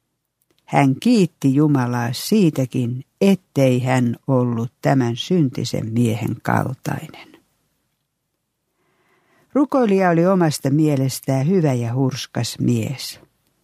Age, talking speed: 60-79, 85 wpm